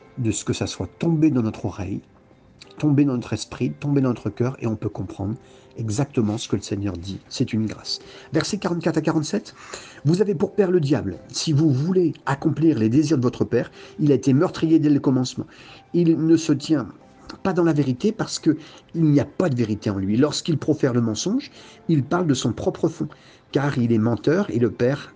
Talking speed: 215 wpm